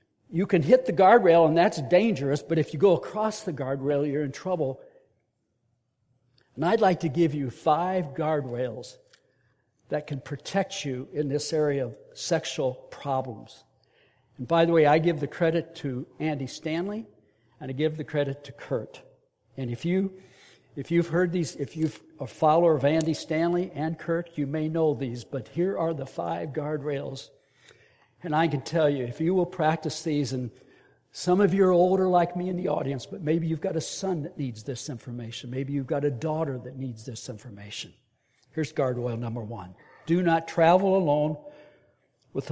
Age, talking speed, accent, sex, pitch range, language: 60-79, 185 wpm, American, male, 130-170 Hz, English